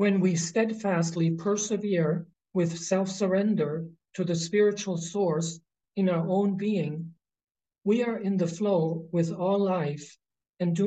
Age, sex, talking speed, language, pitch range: 50-69, male, 130 wpm, English, 165-200 Hz